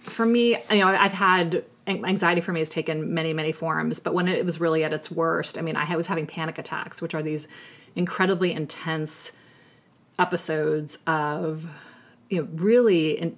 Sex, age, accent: female, 30-49, American